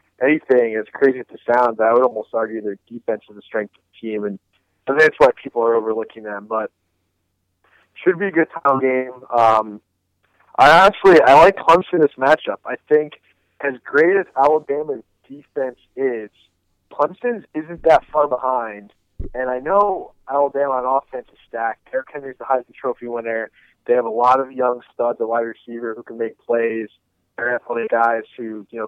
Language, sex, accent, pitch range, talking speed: English, male, American, 110-135 Hz, 180 wpm